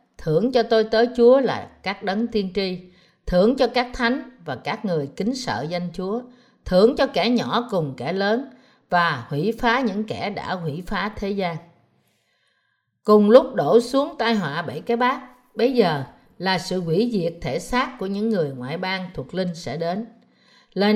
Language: Vietnamese